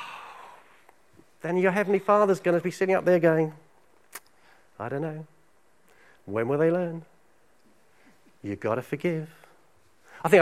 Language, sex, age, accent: English, male, 40-59, British